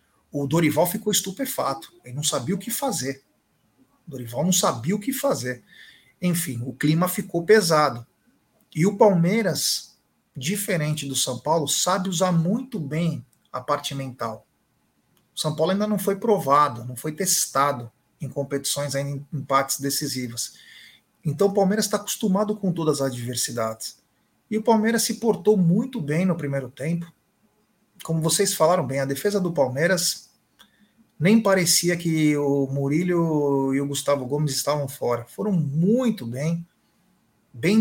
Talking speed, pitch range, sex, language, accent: 150 wpm, 140-200 Hz, male, Portuguese, Brazilian